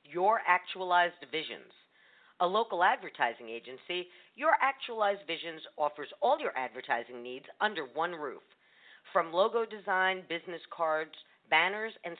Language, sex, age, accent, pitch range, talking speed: English, female, 50-69, American, 145-190 Hz, 125 wpm